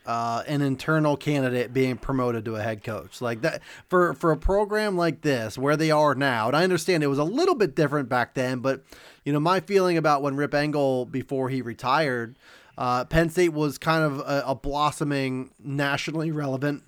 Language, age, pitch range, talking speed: English, 30-49, 130-165 Hz, 200 wpm